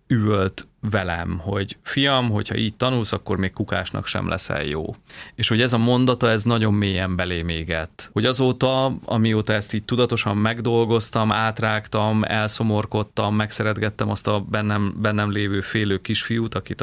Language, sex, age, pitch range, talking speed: Hungarian, male, 30-49, 100-115 Hz, 145 wpm